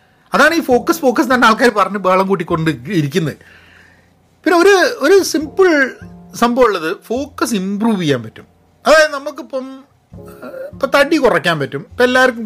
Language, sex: Malayalam, male